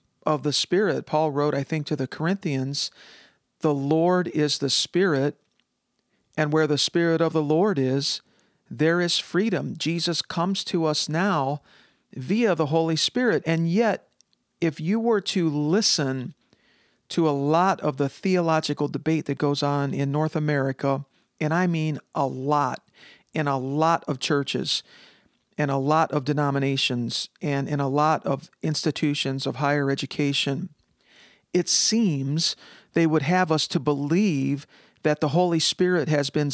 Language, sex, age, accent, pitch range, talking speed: English, male, 50-69, American, 140-165 Hz, 155 wpm